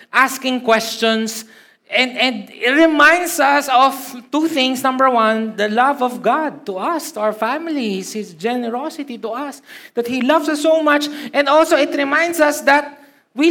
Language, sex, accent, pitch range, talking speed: Filipino, male, native, 205-285 Hz, 170 wpm